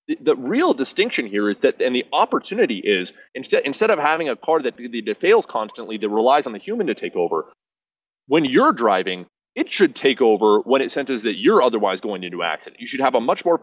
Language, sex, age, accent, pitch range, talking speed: English, male, 30-49, American, 105-140 Hz, 230 wpm